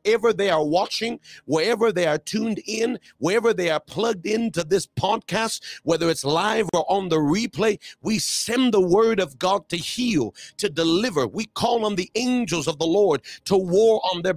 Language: English